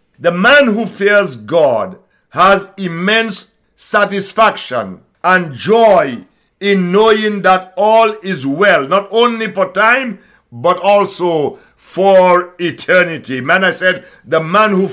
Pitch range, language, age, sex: 180-215 Hz, English, 60-79, male